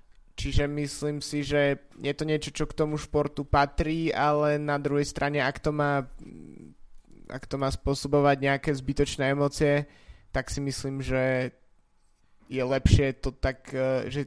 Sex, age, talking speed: male, 20-39, 145 wpm